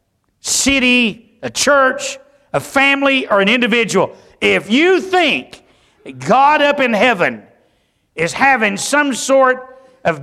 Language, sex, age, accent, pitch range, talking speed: English, male, 60-79, American, 165-265 Hz, 115 wpm